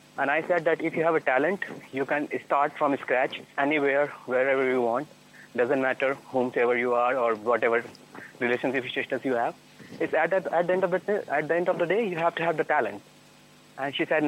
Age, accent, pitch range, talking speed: 30-49, Indian, 130-160 Hz, 220 wpm